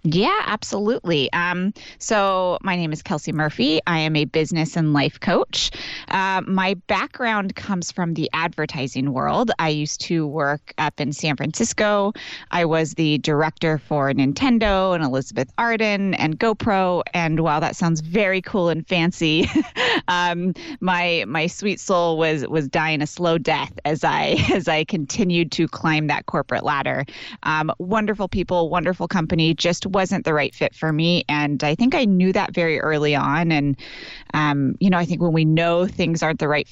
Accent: American